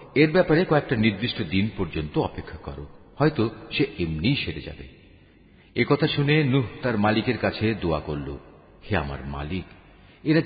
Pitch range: 85-115 Hz